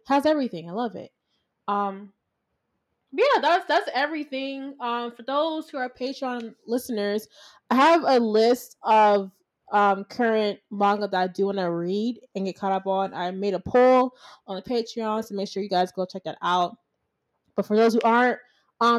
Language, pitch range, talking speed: English, 195-245 Hz, 185 wpm